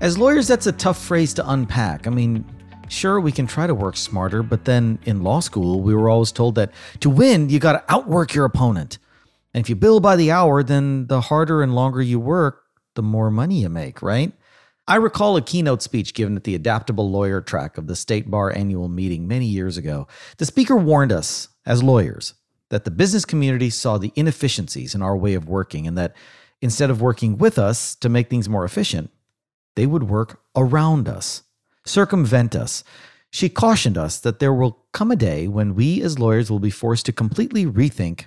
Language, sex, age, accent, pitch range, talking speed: English, male, 40-59, American, 105-140 Hz, 205 wpm